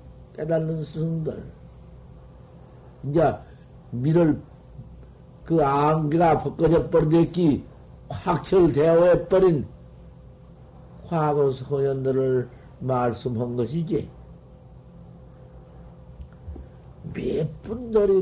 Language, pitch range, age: Korean, 110-160 Hz, 60-79